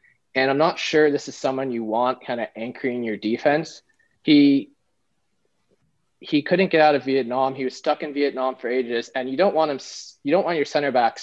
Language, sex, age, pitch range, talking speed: English, male, 20-39, 120-150 Hz, 210 wpm